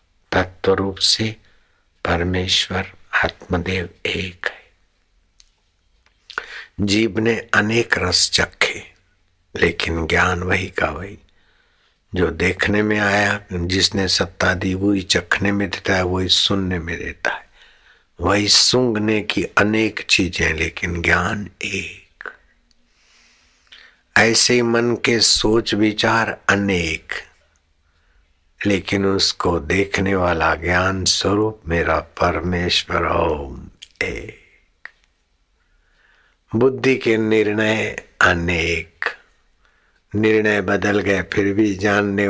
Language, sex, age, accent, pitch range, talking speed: Hindi, male, 60-79, native, 85-105 Hz, 95 wpm